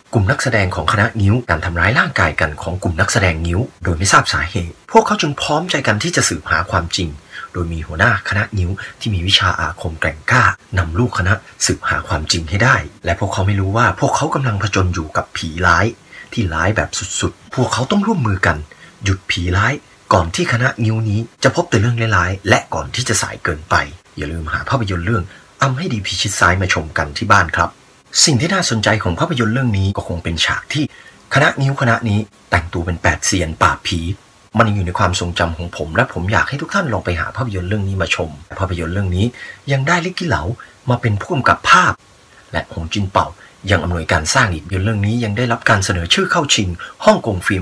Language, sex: Thai, male